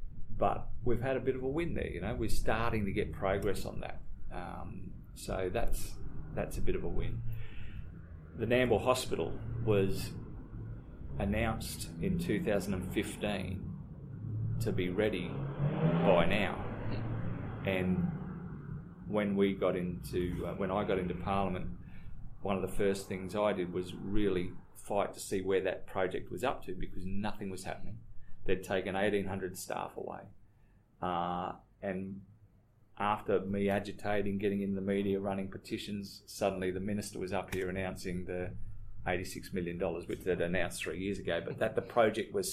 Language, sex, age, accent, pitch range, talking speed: English, male, 30-49, Australian, 95-110 Hz, 155 wpm